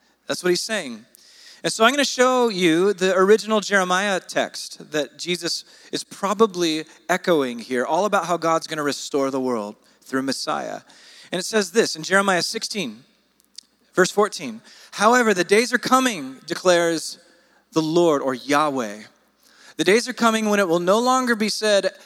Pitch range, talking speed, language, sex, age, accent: 165-230 Hz, 170 wpm, English, male, 30-49, American